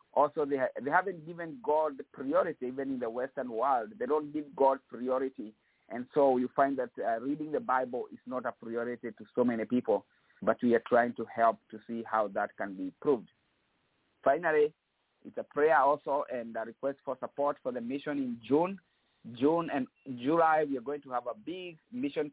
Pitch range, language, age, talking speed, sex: 125-150 Hz, English, 50-69, 200 wpm, male